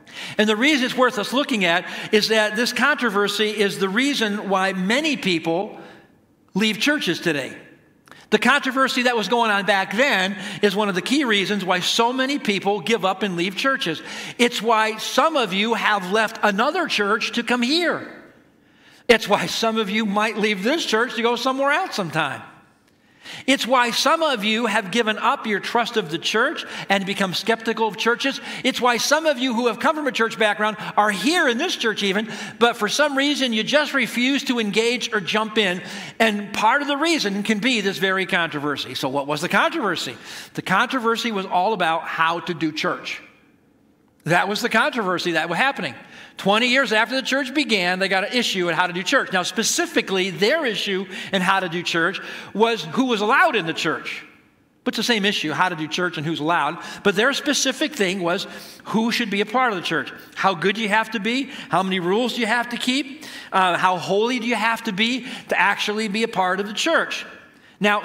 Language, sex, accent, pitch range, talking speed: English, male, American, 195-250 Hz, 210 wpm